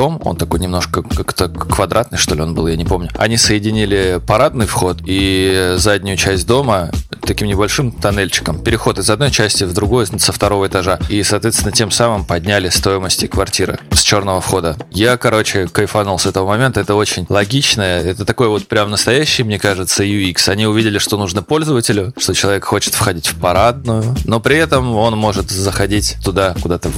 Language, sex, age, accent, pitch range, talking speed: Russian, male, 20-39, native, 95-115 Hz, 175 wpm